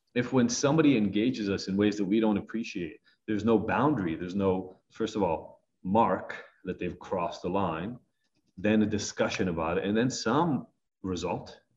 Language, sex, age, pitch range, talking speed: English, male, 30-49, 95-120 Hz, 175 wpm